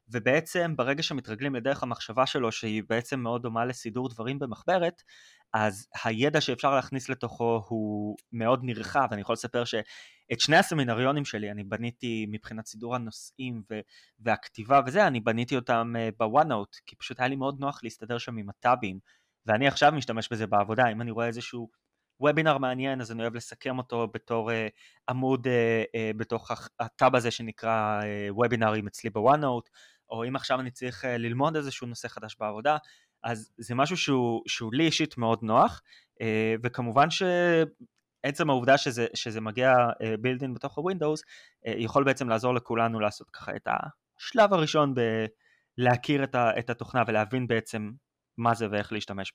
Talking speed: 145 wpm